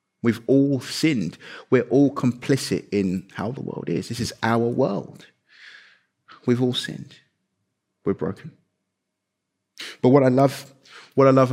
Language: English